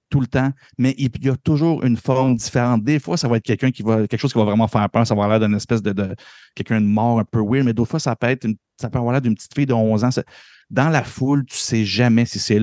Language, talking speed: French, 315 wpm